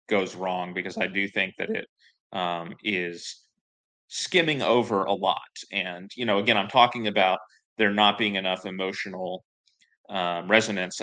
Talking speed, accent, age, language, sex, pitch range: 150 wpm, American, 30-49, English, male, 95-110 Hz